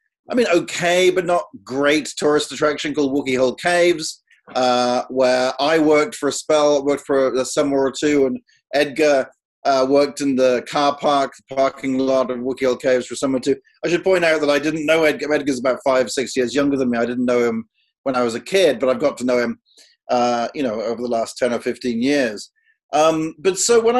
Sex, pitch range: male, 130-190 Hz